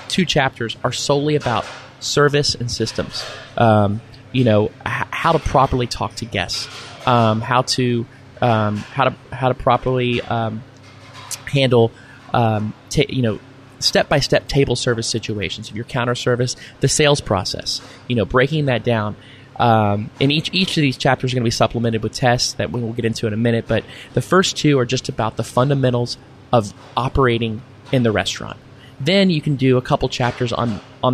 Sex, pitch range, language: male, 115-130 Hz, English